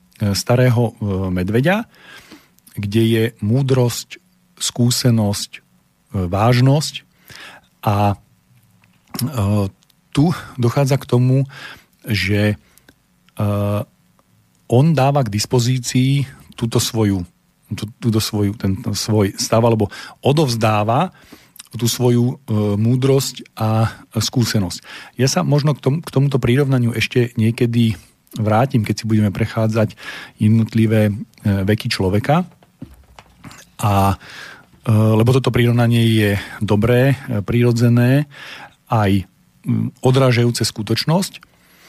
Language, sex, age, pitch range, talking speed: Slovak, male, 40-59, 110-130 Hz, 85 wpm